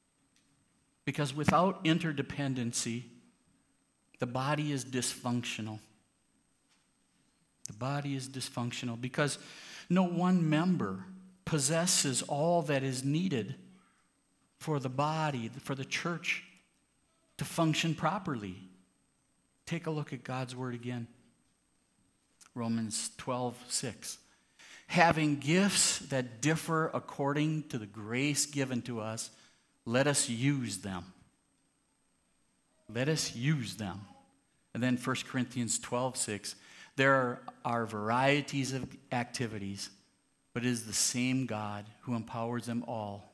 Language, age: English, 50-69